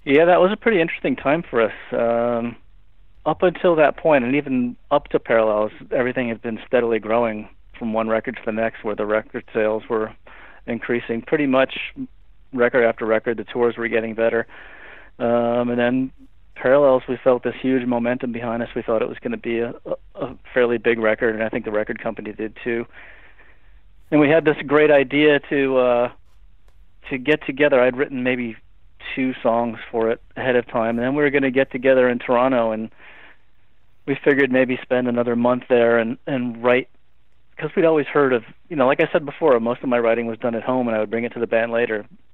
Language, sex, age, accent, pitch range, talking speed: English, male, 40-59, American, 110-130 Hz, 205 wpm